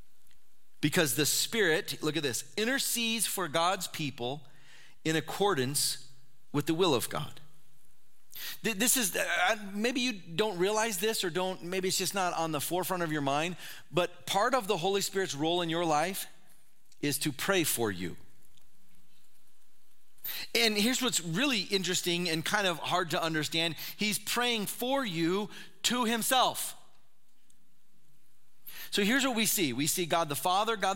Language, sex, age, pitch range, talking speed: English, male, 40-59, 150-200 Hz, 155 wpm